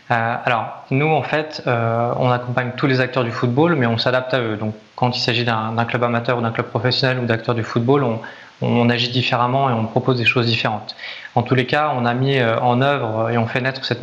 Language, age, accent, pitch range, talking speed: French, 20-39, French, 120-135 Hz, 255 wpm